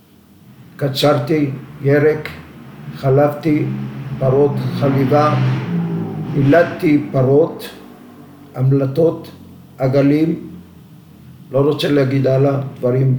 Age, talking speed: 50-69, 65 wpm